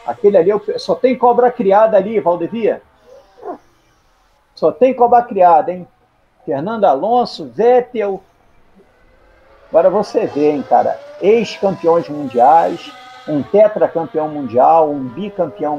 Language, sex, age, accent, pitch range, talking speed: Portuguese, male, 60-79, Brazilian, 170-255 Hz, 105 wpm